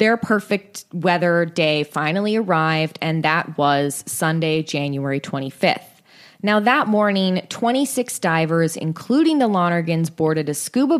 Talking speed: 125 wpm